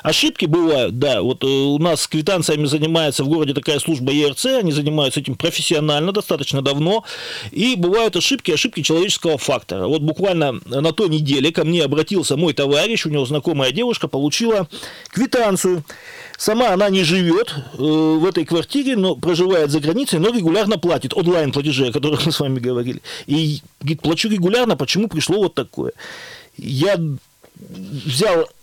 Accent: native